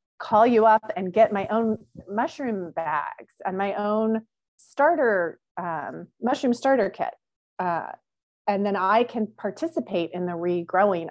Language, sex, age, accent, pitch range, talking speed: English, female, 30-49, American, 185-255 Hz, 140 wpm